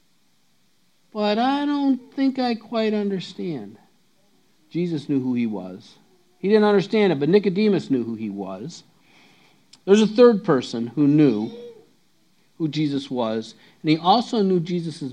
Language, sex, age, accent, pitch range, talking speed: English, male, 50-69, American, 135-200 Hz, 145 wpm